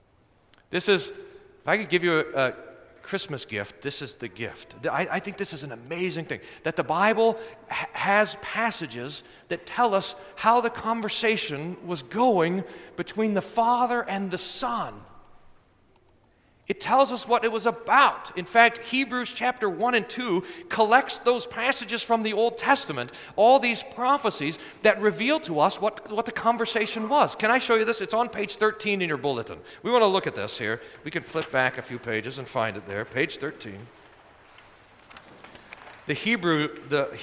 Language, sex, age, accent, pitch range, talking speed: English, male, 40-59, American, 165-230 Hz, 175 wpm